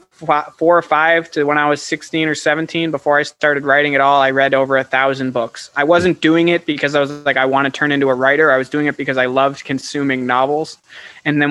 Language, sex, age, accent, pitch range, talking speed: English, male, 20-39, American, 140-160 Hz, 250 wpm